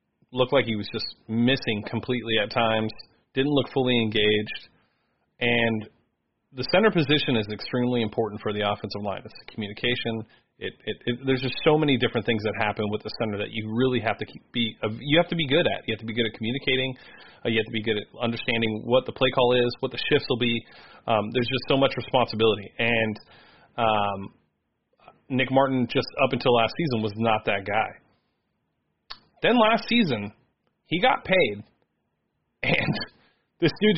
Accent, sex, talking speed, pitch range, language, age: American, male, 185 wpm, 110-135 Hz, English, 30-49